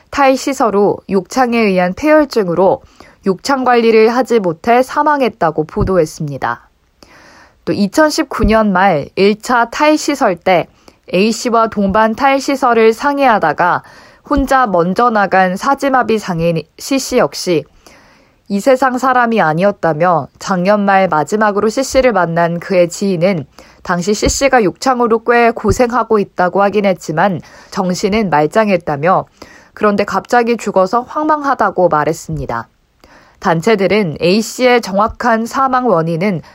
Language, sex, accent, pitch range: Korean, female, native, 185-245 Hz